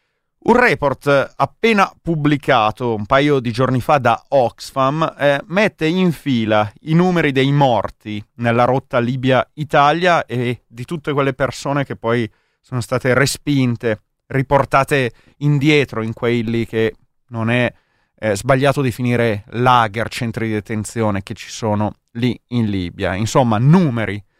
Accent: native